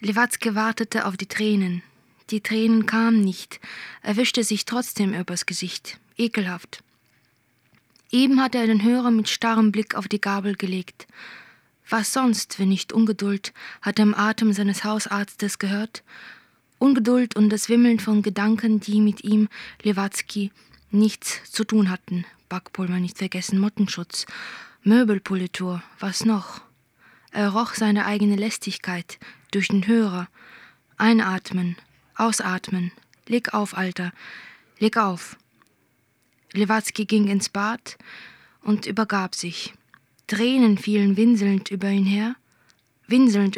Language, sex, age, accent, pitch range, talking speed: German, female, 20-39, German, 190-225 Hz, 125 wpm